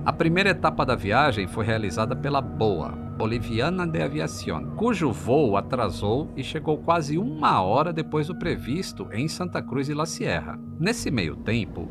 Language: Portuguese